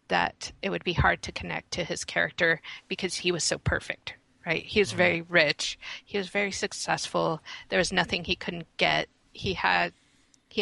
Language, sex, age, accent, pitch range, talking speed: English, female, 30-49, American, 160-195 Hz, 180 wpm